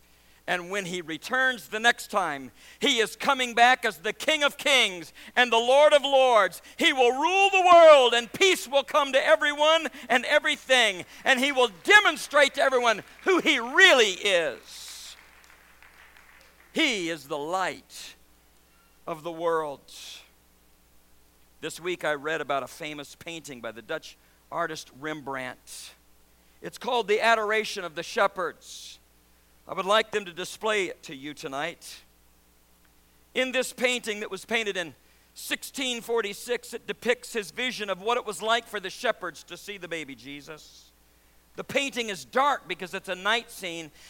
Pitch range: 150-245 Hz